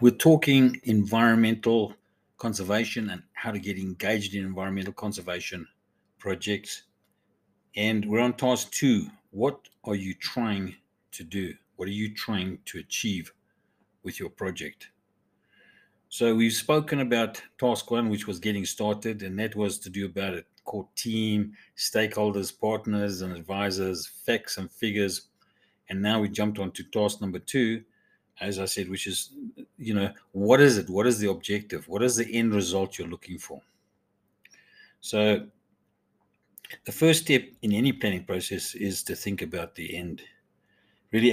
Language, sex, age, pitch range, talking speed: English, male, 50-69, 95-115 Hz, 150 wpm